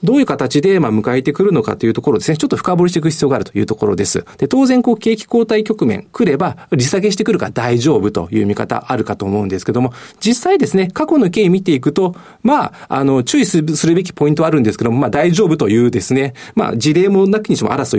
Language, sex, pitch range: Japanese, male, 130-210 Hz